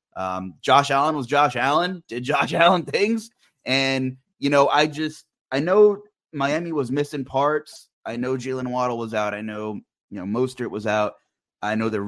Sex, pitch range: male, 115-165 Hz